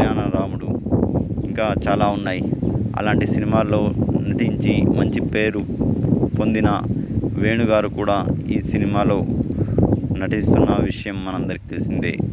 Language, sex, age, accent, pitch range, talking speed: Telugu, male, 20-39, native, 100-115 Hz, 85 wpm